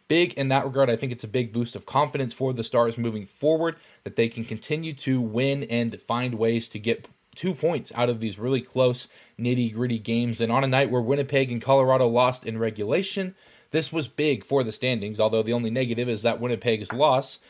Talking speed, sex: 215 wpm, male